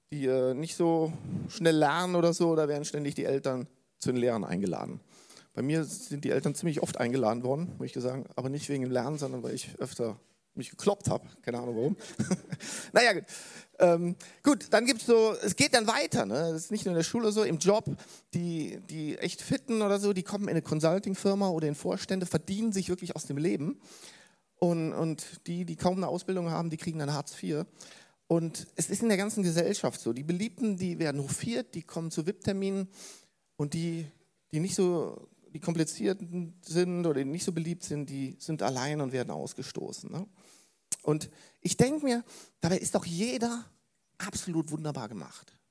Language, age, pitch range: German, 40-59, 155-195 Hz